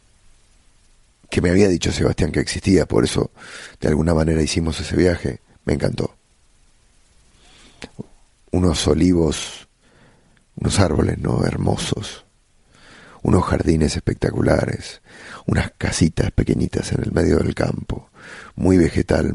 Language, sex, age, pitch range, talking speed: English, male, 40-59, 80-95 Hz, 110 wpm